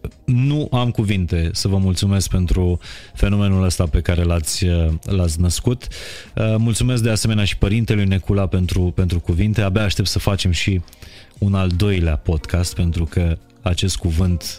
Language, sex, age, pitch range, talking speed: Romanian, male, 30-49, 90-110 Hz, 150 wpm